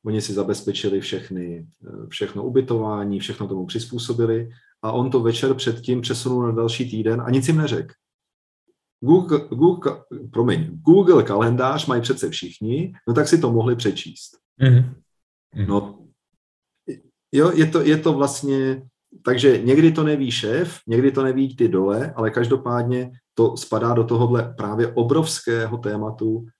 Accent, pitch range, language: native, 110-125 Hz, Czech